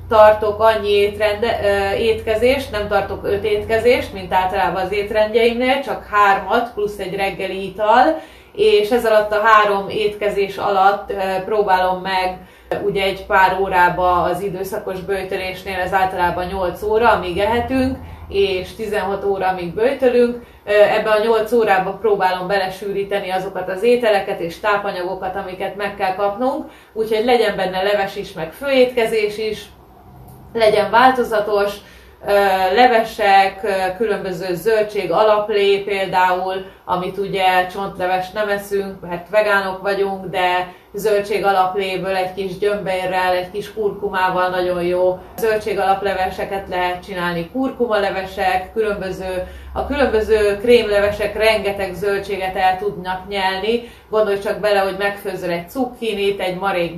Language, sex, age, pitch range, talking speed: Hungarian, female, 30-49, 190-215 Hz, 125 wpm